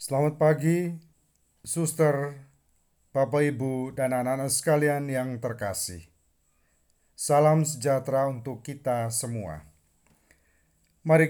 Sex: male